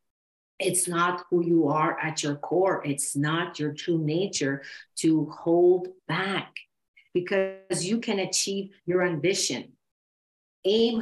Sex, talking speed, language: female, 125 wpm, English